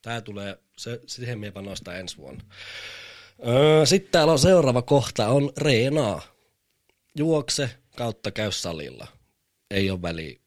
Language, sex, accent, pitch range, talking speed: Finnish, male, native, 90-125 Hz, 125 wpm